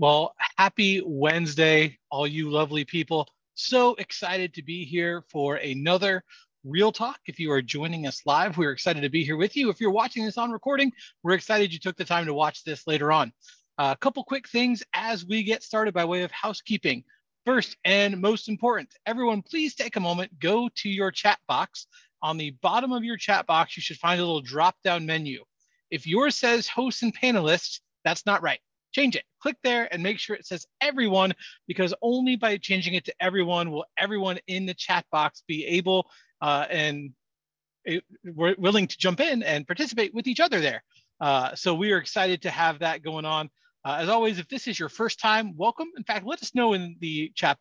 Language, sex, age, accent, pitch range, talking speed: English, male, 30-49, American, 165-225 Hz, 205 wpm